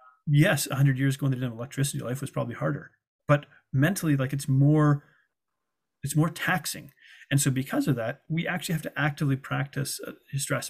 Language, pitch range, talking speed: English, 125-145 Hz, 180 wpm